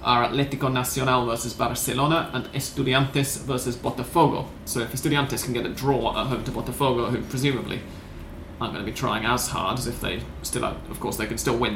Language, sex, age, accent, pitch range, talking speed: English, male, 30-49, British, 120-140 Hz, 205 wpm